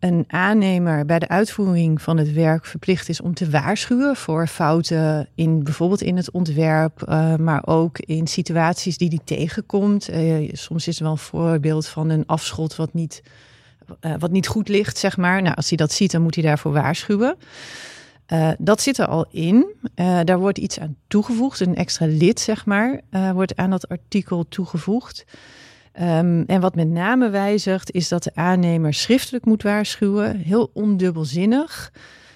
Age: 40-59